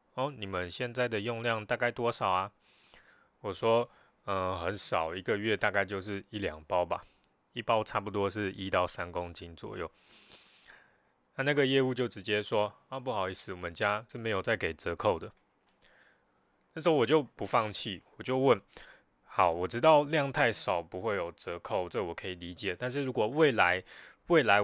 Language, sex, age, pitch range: Chinese, male, 20-39, 95-115 Hz